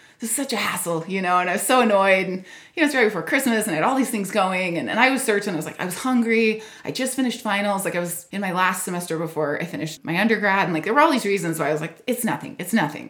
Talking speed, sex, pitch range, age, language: 305 wpm, female, 170-240 Hz, 20-39, English